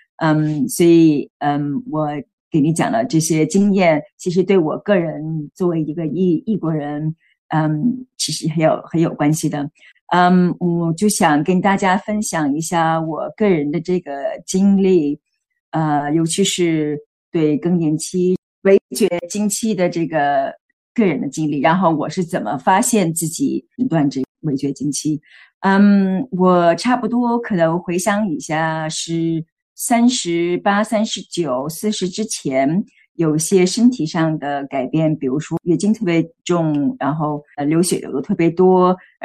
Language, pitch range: Chinese, 155-200 Hz